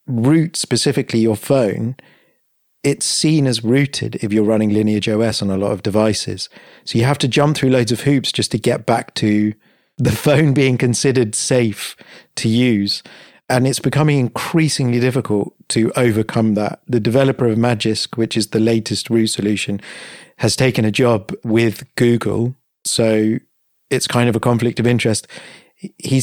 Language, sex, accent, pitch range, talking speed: English, male, British, 110-135 Hz, 165 wpm